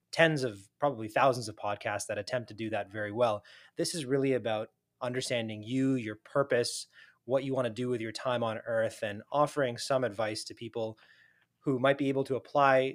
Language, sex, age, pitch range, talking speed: English, male, 20-39, 105-135 Hz, 200 wpm